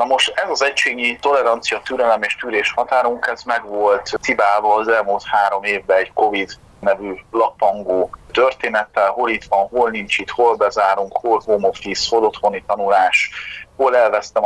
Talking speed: 160 wpm